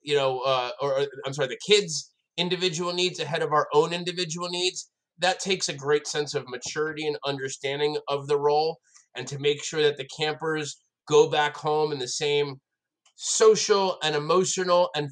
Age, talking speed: 30-49, 180 wpm